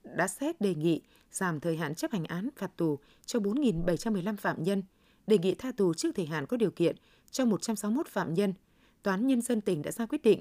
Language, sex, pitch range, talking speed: Vietnamese, female, 170-230 Hz, 220 wpm